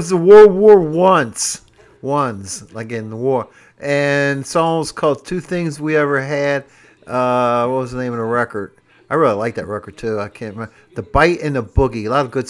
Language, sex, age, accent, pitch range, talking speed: English, male, 50-69, American, 110-140 Hz, 205 wpm